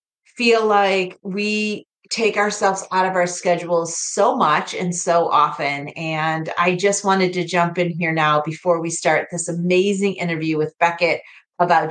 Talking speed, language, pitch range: 160 wpm, English, 175-215 Hz